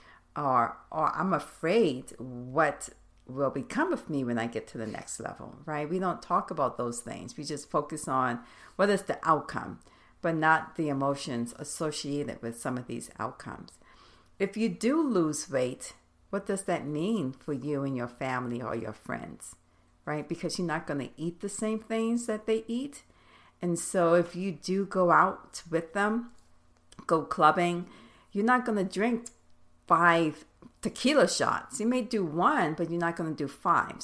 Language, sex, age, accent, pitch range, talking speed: English, female, 60-79, American, 150-205 Hz, 175 wpm